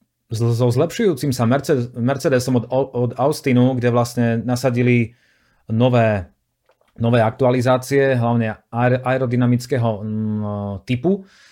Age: 30-49